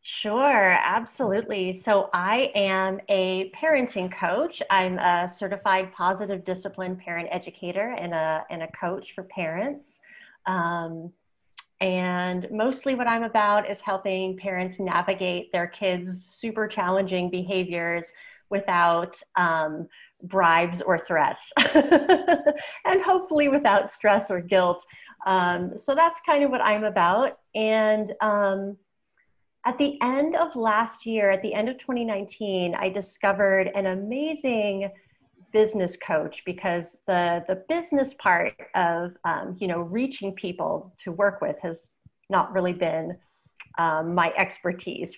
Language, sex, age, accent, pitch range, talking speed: English, female, 30-49, American, 180-220 Hz, 130 wpm